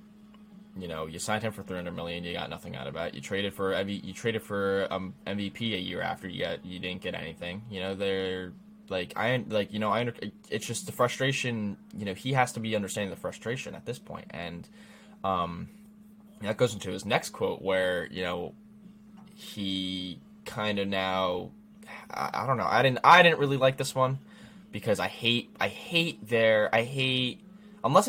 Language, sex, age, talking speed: English, male, 10-29, 200 wpm